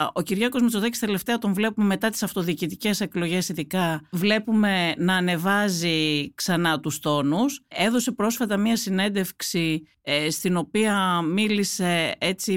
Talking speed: 120 wpm